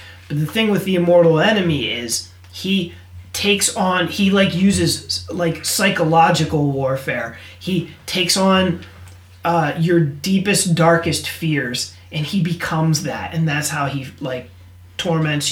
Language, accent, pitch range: English, American, 135-175 Hz